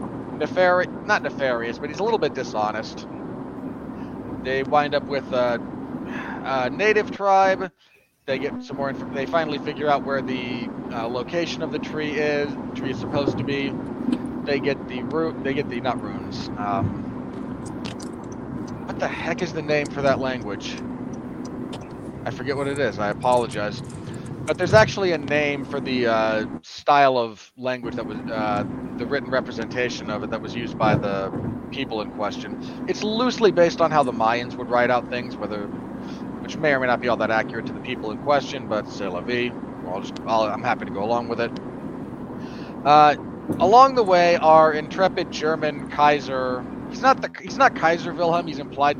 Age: 30-49